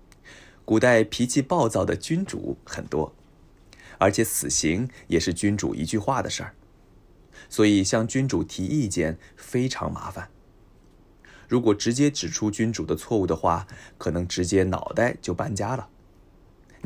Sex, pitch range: male, 95-120 Hz